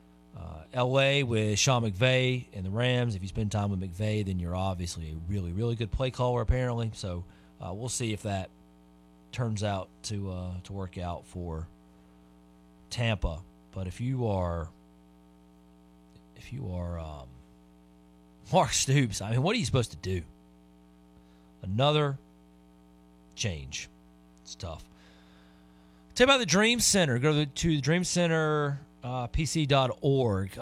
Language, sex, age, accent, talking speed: English, male, 40-59, American, 150 wpm